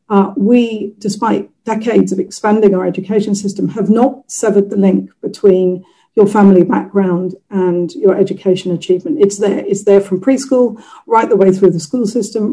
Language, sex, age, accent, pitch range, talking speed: English, female, 50-69, British, 185-225 Hz, 170 wpm